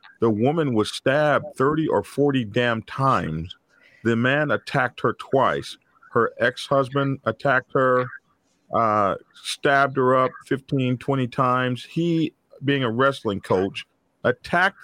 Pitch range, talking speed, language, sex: 125-165 Hz, 125 wpm, English, male